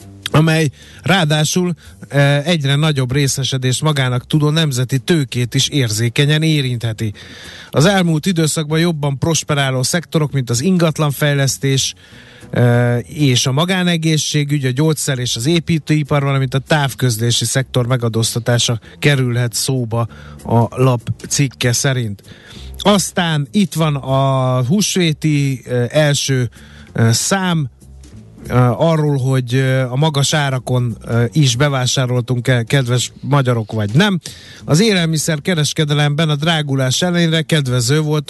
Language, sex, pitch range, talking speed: Hungarian, male, 125-155 Hz, 110 wpm